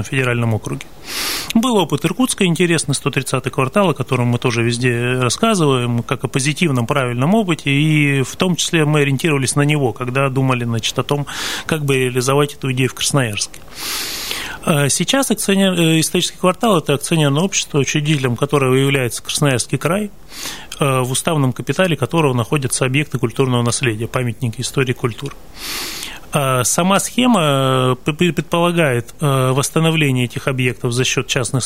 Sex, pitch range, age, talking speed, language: male, 130-160 Hz, 30-49, 135 wpm, Russian